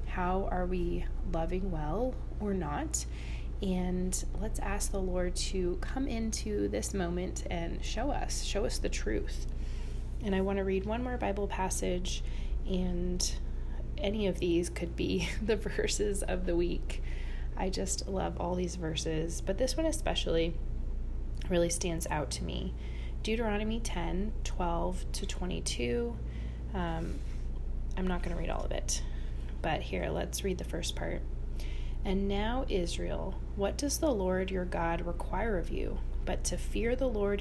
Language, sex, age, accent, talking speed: English, female, 20-39, American, 155 wpm